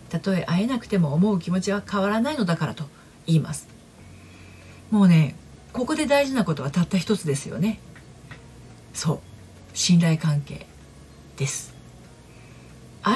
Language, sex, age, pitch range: Japanese, female, 40-59, 150-210 Hz